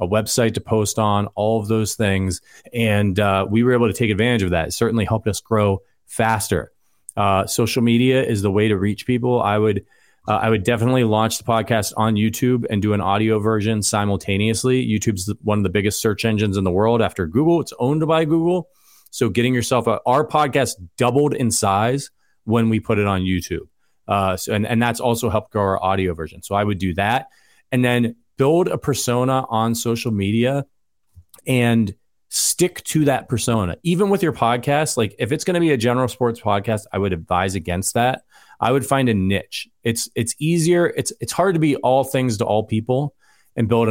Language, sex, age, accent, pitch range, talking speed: English, male, 30-49, American, 105-125 Hz, 205 wpm